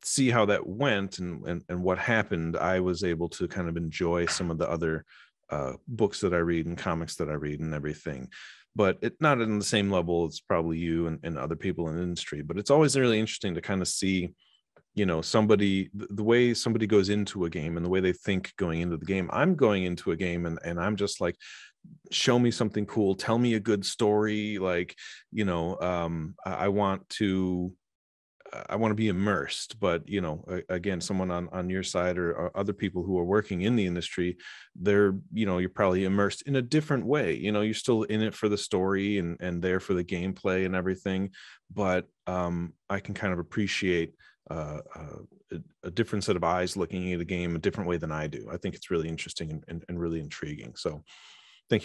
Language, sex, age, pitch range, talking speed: English, male, 30-49, 85-105 Hz, 220 wpm